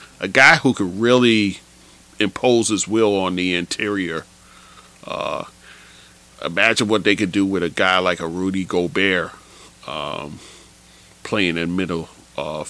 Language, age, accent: English, 40-59, American